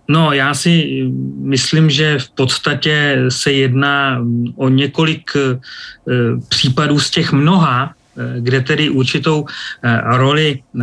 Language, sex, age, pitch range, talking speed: Czech, male, 30-49, 125-150 Hz, 115 wpm